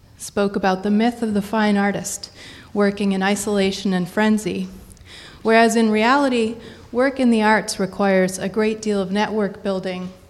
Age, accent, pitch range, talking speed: 30-49, American, 195-220 Hz, 155 wpm